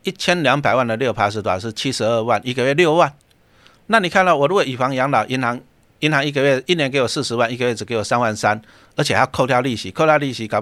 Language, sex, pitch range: Chinese, male, 110-140 Hz